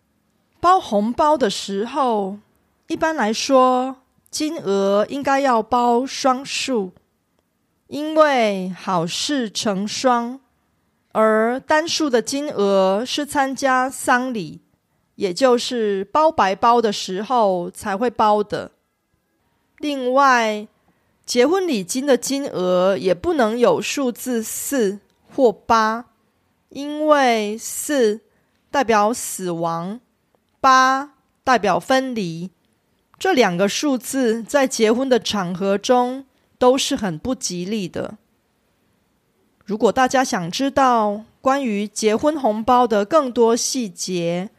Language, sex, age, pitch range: Korean, female, 20-39, 205-265 Hz